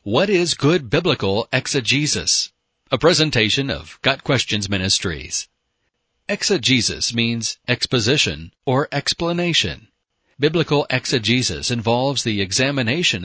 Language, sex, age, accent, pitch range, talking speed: English, male, 40-59, American, 100-140 Hz, 95 wpm